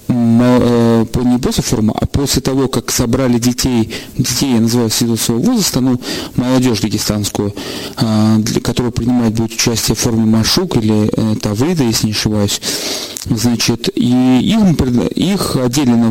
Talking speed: 130 wpm